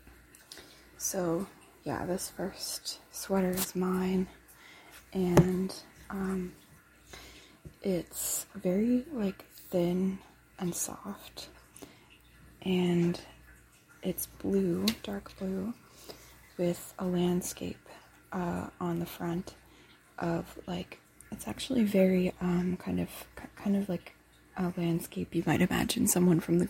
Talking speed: 105 wpm